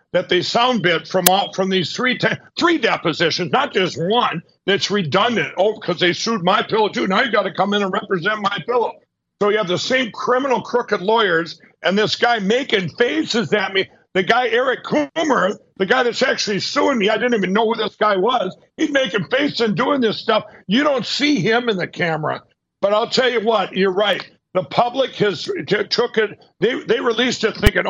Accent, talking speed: American, 210 wpm